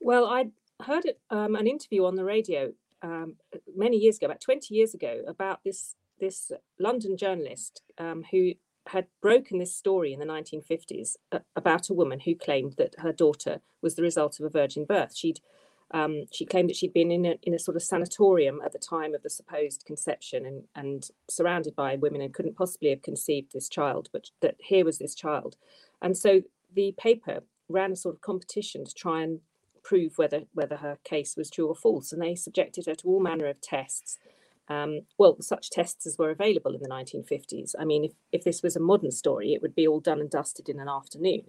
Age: 40-59